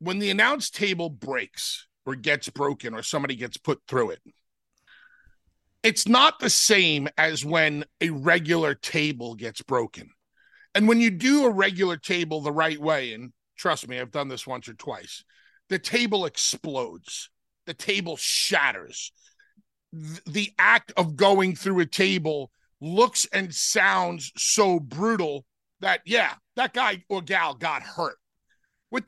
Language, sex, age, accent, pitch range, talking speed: English, male, 40-59, American, 170-225 Hz, 145 wpm